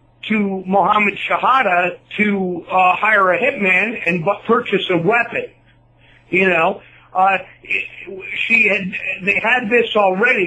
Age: 50-69